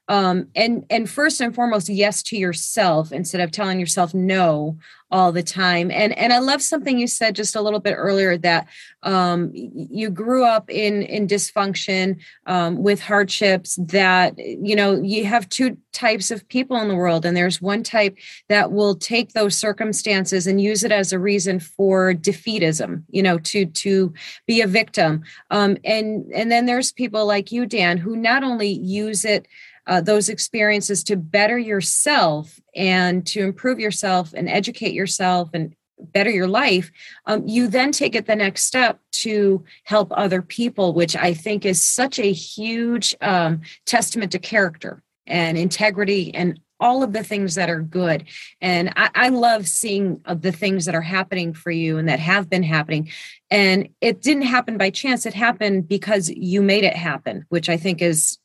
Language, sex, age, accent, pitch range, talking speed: English, female, 30-49, American, 180-215 Hz, 180 wpm